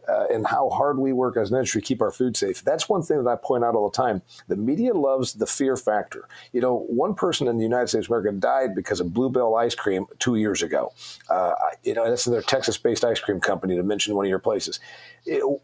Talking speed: 255 wpm